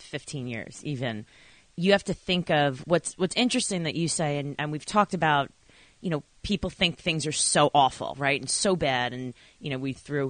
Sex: female